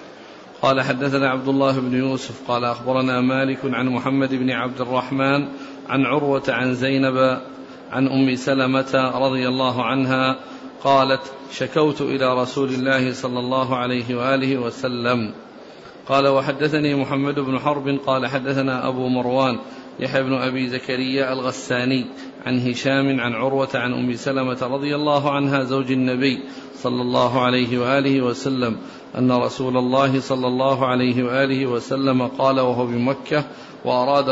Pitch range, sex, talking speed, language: 125-135 Hz, male, 135 wpm, Arabic